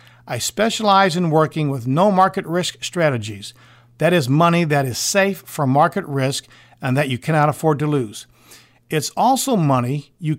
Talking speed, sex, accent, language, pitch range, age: 170 wpm, male, American, English, 125-180 Hz, 50-69